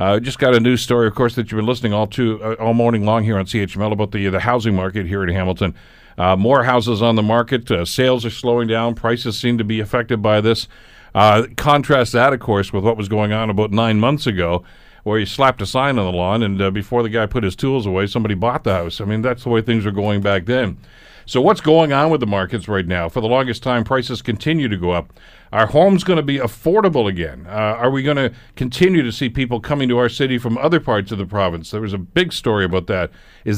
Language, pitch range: English, 100-125 Hz